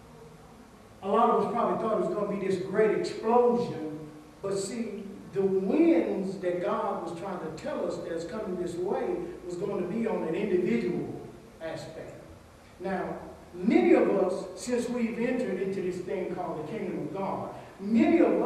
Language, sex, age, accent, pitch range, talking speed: English, male, 50-69, American, 185-235 Hz, 175 wpm